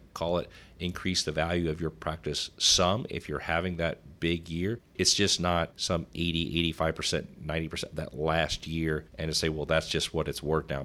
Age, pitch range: 40-59, 80-90 Hz